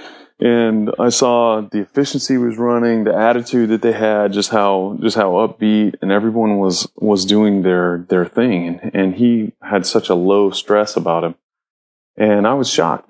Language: English